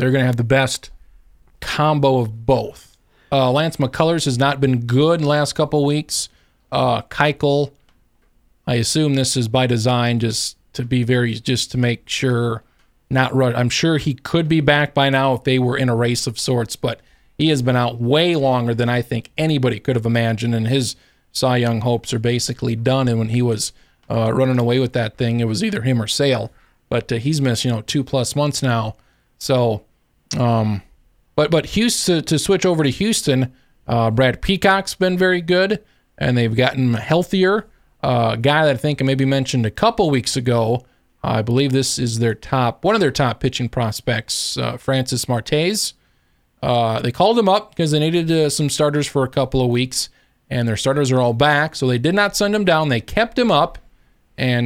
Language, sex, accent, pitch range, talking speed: English, male, American, 120-150 Hz, 200 wpm